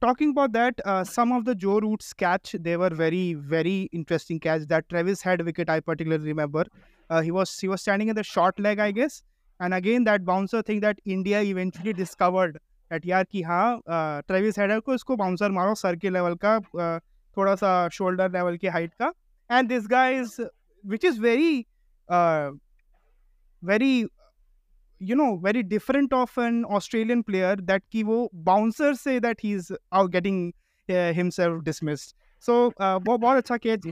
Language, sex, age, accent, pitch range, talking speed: Hindi, male, 20-39, native, 180-235 Hz, 170 wpm